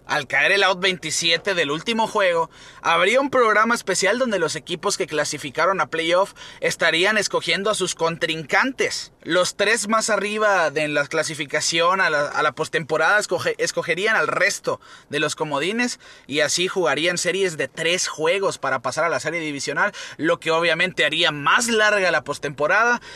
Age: 30-49